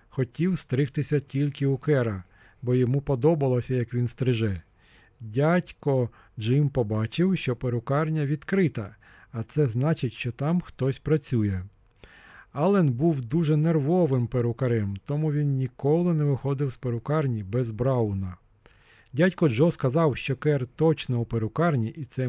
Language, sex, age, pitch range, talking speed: Ukrainian, male, 40-59, 115-150 Hz, 130 wpm